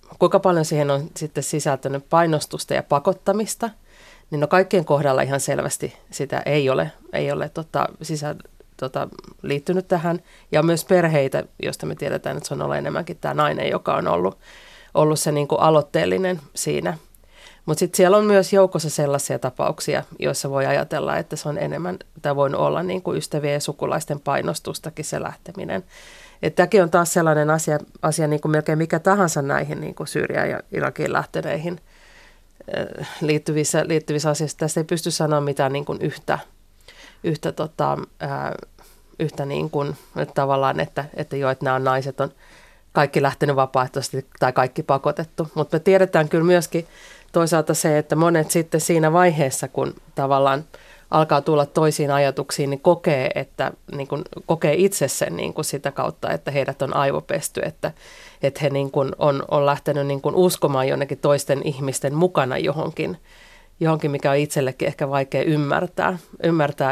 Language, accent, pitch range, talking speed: Finnish, native, 140-170 Hz, 155 wpm